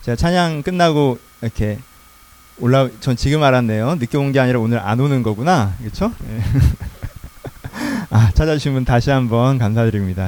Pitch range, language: 110-145 Hz, Korean